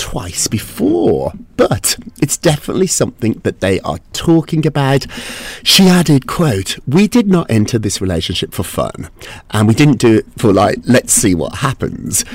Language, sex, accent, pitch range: English, male, British, 105-175 Hz